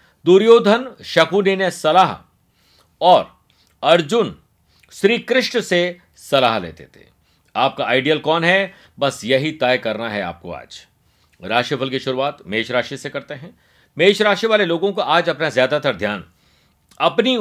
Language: Hindi